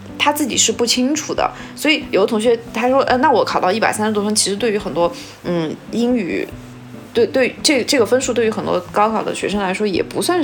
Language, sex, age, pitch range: Chinese, female, 20-39, 185-245 Hz